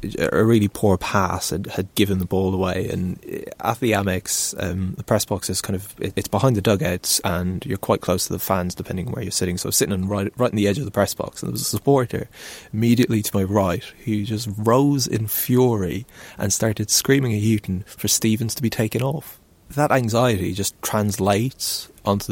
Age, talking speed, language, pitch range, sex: 20-39, 220 wpm, English, 90-110 Hz, male